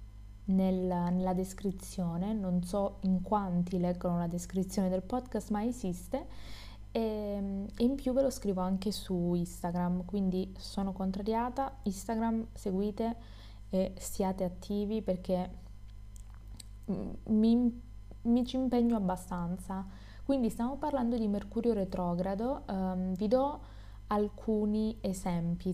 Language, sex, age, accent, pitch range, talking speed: Italian, female, 20-39, native, 175-210 Hz, 105 wpm